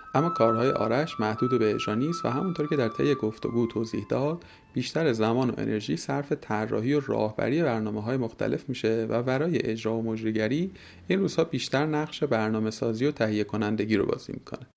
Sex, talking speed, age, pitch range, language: male, 185 wpm, 30-49, 110-145 Hz, Persian